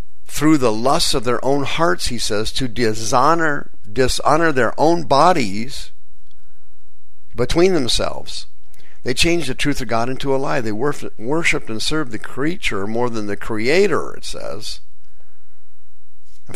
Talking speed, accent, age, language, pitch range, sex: 140 wpm, American, 50-69, English, 90-125 Hz, male